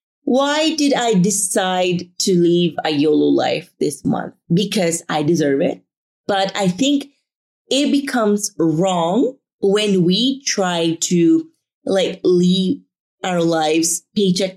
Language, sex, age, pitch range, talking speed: English, female, 30-49, 170-230 Hz, 125 wpm